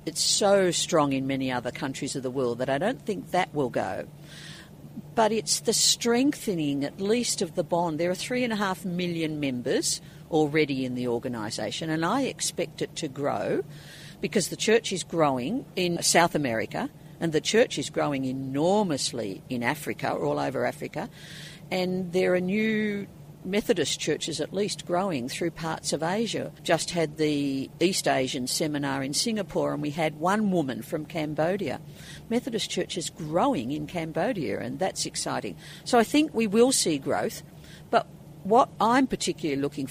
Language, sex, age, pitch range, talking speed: English, female, 50-69, 150-185 Hz, 165 wpm